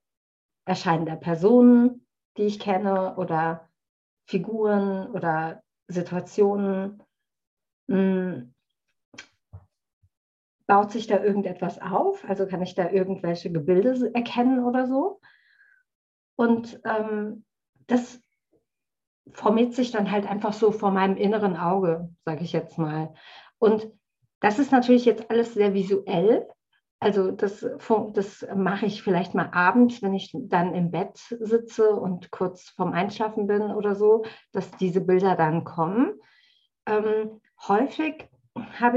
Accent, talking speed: German, 120 wpm